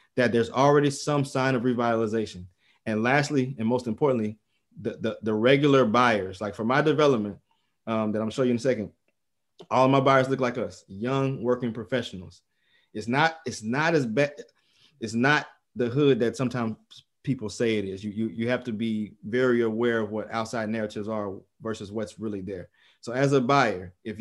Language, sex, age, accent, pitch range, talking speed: English, male, 30-49, American, 110-135 Hz, 190 wpm